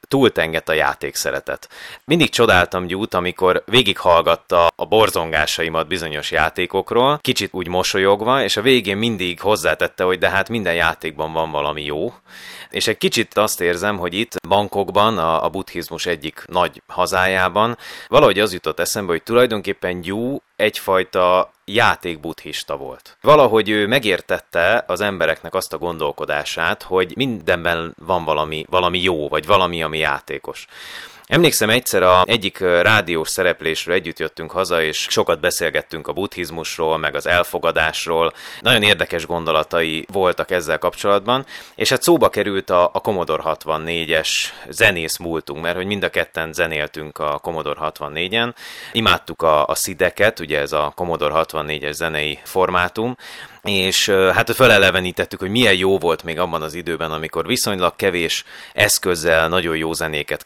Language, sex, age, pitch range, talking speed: Hungarian, male, 30-49, 80-105 Hz, 140 wpm